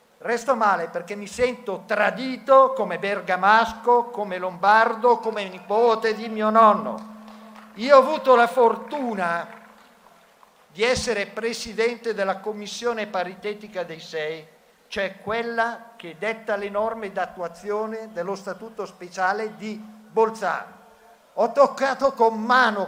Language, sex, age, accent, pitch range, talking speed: Italian, male, 50-69, native, 200-235 Hz, 115 wpm